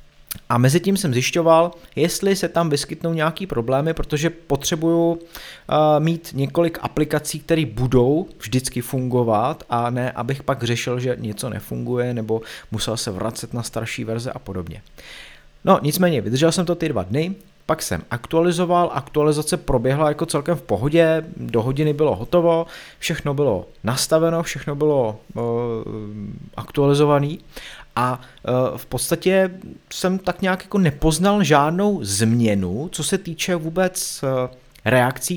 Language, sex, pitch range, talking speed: Czech, male, 115-160 Hz, 135 wpm